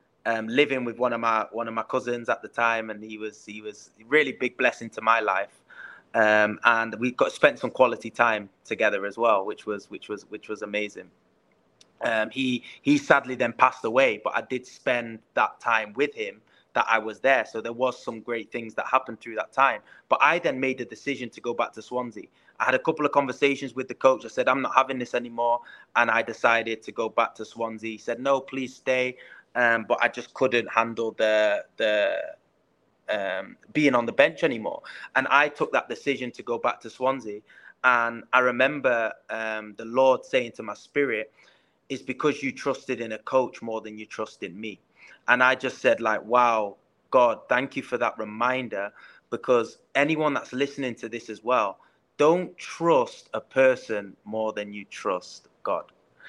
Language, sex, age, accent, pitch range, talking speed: English, male, 20-39, British, 110-130 Hz, 200 wpm